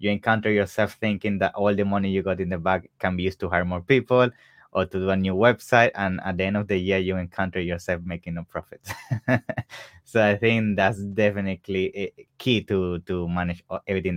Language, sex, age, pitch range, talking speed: English, male, 20-39, 90-105 Hz, 210 wpm